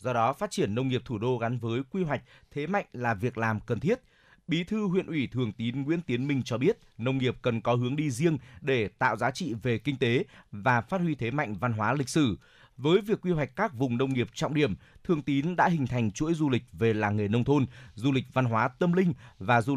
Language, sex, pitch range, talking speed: Vietnamese, male, 115-145 Hz, 255 wpm